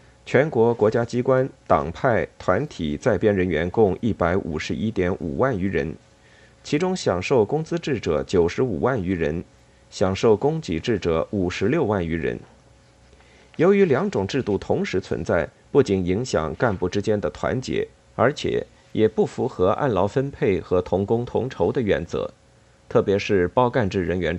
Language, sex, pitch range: Chinese, male, 90-120 Hz